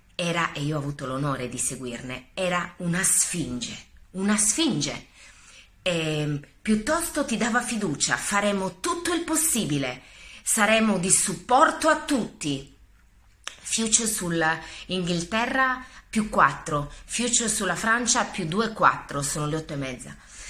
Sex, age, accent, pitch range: female, 30-49, native, 150-215 Hz